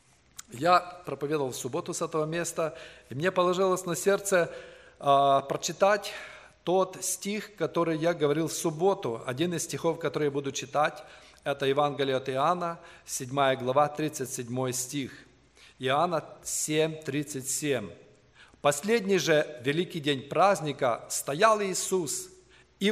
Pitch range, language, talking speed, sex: 145-200 Hz, English, 125 wpm, male